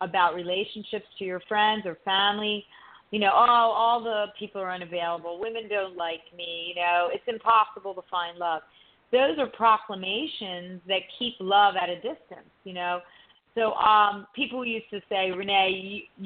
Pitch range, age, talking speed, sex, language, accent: 185-230 Hz, 40-59, 165 wpm, female, English, American